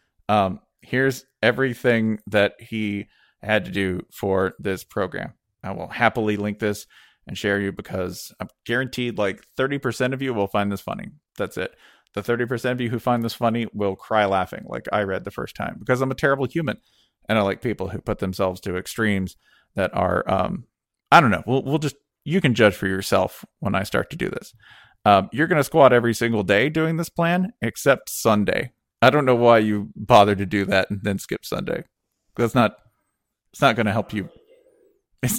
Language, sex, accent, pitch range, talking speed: English, male, American, 105-160 Hz, 200 wpm